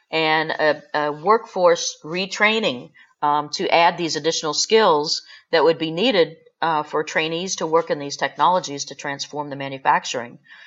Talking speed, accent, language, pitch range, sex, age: 150 wpm, American, English, 145-180 Hz, female, 40-59